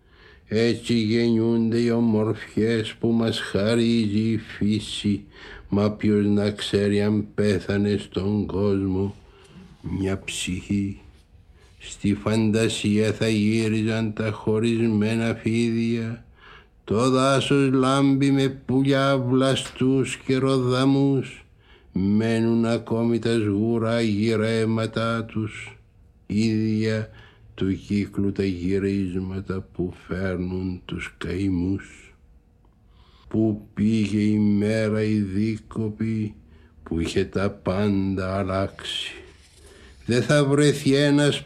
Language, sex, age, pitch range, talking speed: Greek, male, 60-79, 100-115 Hz, 85 wpm